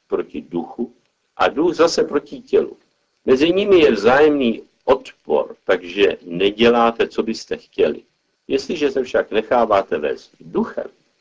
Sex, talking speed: male, 125 wpm